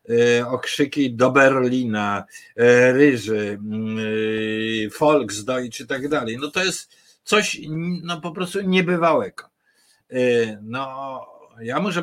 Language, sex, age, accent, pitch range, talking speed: Polish, male, 50-69, native, 110-145 Hz, 95 wpm